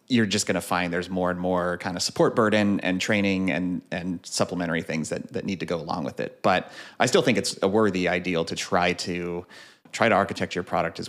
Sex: male